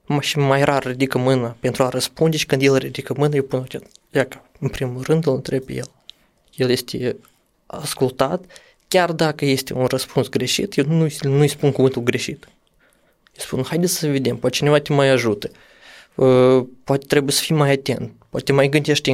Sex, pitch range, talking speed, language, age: male, 135-155 Hz, 175 wpm, Romanian, 20-39